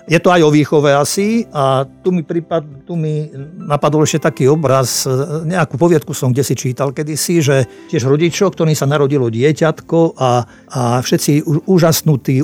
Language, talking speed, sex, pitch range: Slovak, 160 wpm, male, 130-165 Hz